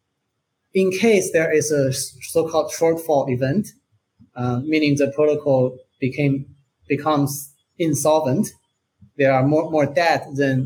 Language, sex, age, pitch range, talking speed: English, male, 30-49, 130-155 Hz, 120 wpm